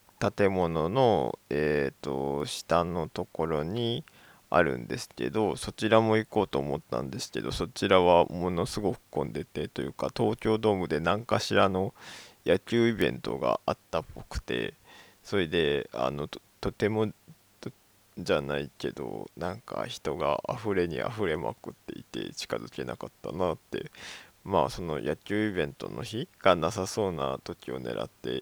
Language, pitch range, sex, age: Japanese, 75-110 Hz, male, 20-39